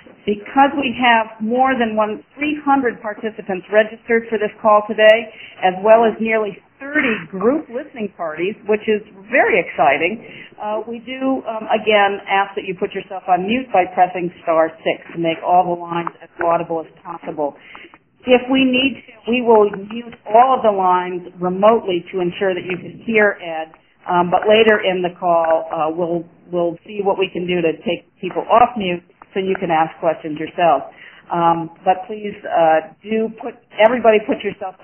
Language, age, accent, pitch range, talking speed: English, 50-69, American, 180-235 Hz, 175 wpm